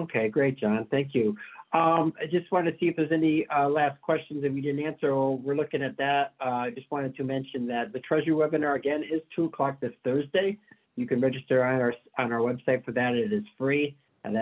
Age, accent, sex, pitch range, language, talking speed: 50-69, American, male, 125-150 Hz, English, 230 wpm